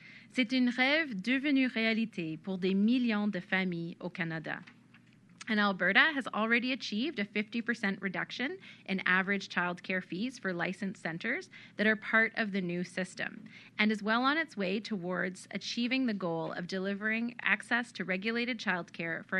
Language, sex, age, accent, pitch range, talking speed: English, female, 30-49, American, 180-230 Hz, 165 wpm